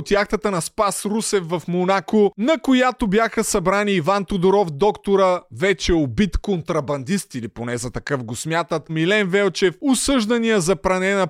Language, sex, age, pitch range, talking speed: Bulgarian, male, 20-39, 175-220 Hz, 150 wpm